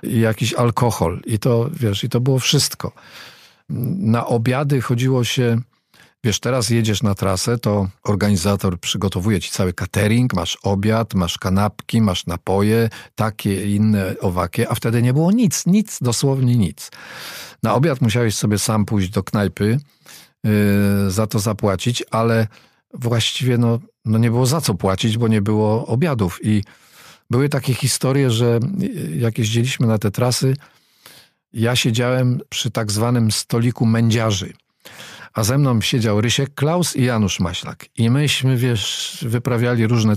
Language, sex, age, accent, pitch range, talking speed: Polish, male, 40-59, native, 105-130 Hz, 145 wpm